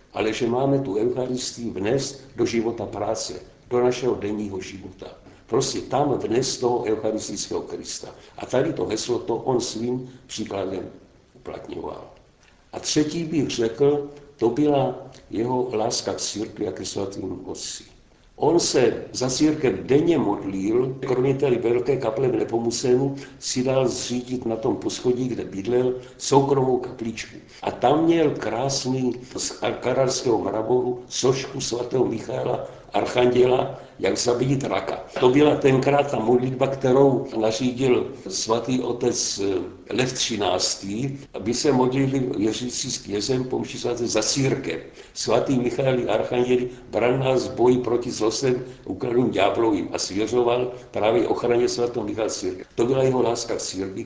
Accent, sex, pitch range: native, male, 115-130 Hz